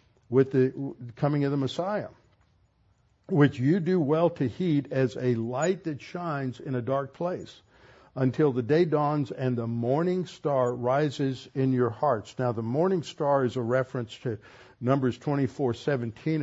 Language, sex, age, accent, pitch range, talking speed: English, male, 60-79, American, 120-140 Hz, 155 wpm